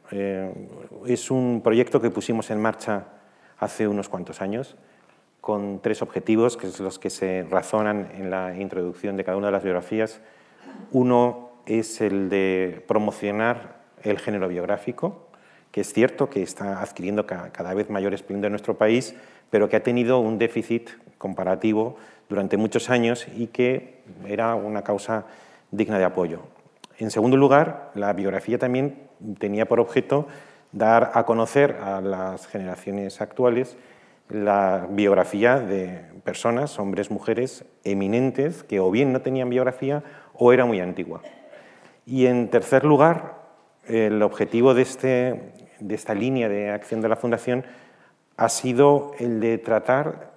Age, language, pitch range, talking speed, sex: 40-59, Spanish, 100-125 Hz, 145 wpm, male